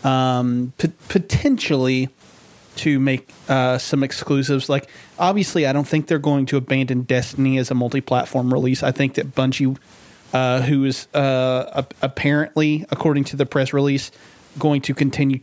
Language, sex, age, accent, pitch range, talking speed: English, male, 30-49, American, 130-150 Hz, 155 wpm